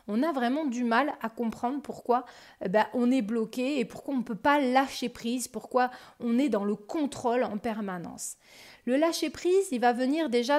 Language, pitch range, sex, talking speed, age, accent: French, 200-245 Hz, female, 205 wpm, 30-49, French